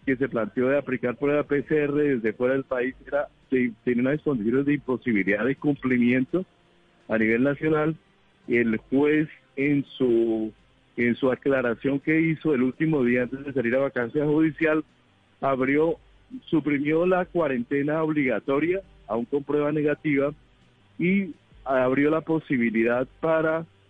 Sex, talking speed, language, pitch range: male, 140 wpm, Spanish, 130-160 Hz